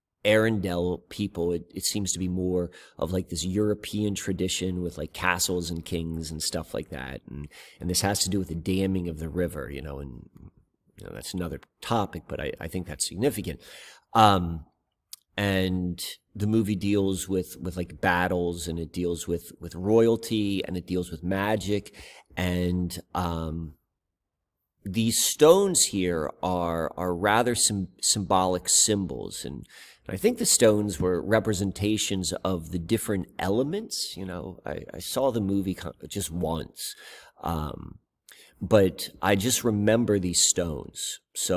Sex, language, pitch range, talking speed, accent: male, English, 85-100 Hz, 155 wpm, American